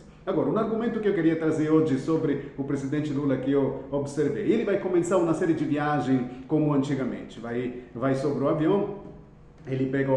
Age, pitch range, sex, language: 40-59, 135-160 Hz, male, Italian